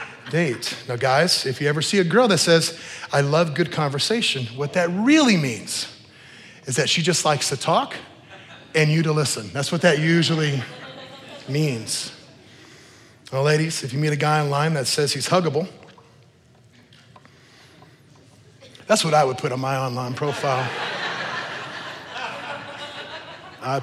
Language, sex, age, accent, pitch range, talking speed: English, male, 30-49, American, 135-175 Hz, 145 wpm